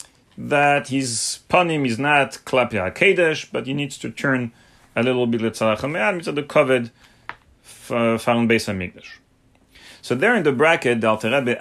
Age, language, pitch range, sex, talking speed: 30-49, English, 110-145 Hz, male, 140 wpm